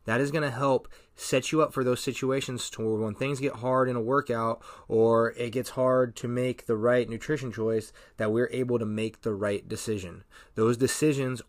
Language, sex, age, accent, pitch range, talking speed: English, male, 20-39, American, 110-130 Hz, 205 wpm